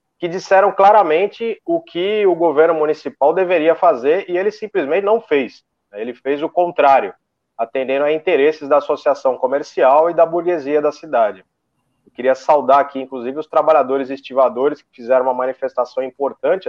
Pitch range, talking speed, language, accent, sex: 130-165 Hz, 155 wpm, Portuguese, Brazilian, male